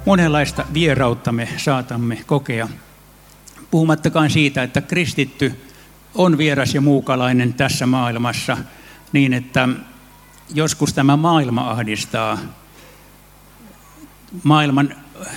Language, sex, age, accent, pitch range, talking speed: Finnish, male, 60-79, native, 125-150 Hz, 85 wpm